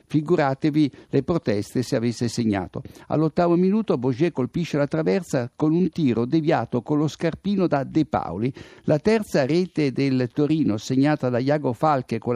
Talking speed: 155 wpm